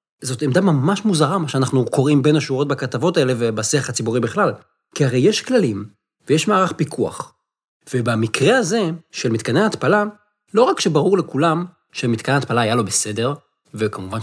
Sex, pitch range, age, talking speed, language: male, 115-185 Hz, 30-49, 150 wpm, Hebrew